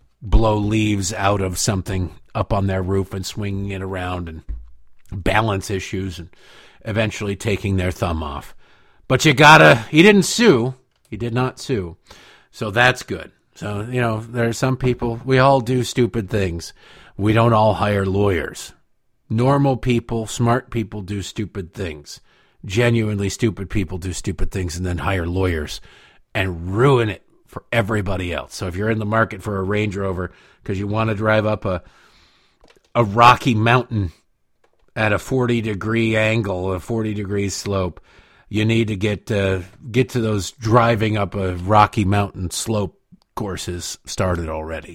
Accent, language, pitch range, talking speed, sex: American, English, 95-115 Hz, 160 wpm, male